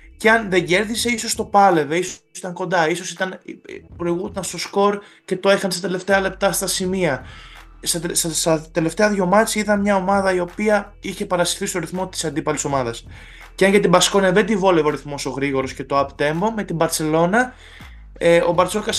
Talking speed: 190 wpm